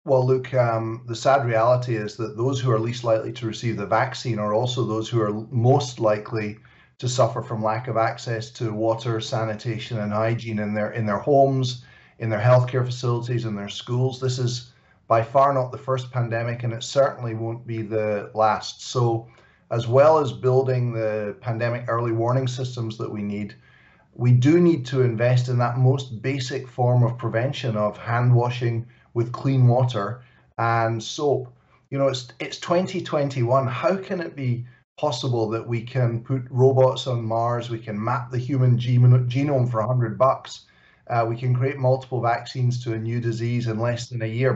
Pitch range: 115-130 Hz